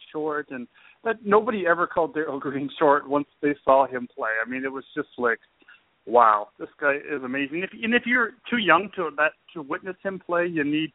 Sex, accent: male, American